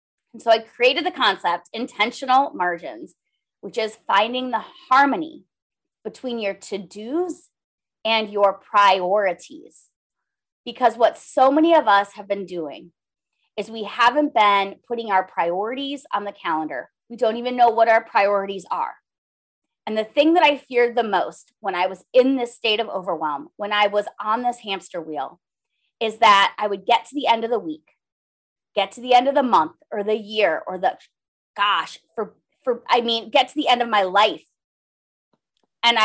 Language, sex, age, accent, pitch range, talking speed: English, female, 30-49, American, 195-255 Hz, 175 wpm